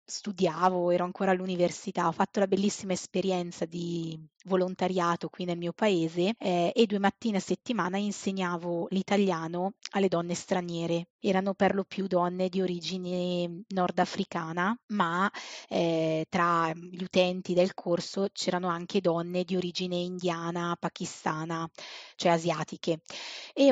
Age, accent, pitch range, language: 20-39, native, 180-210 Hz, Italian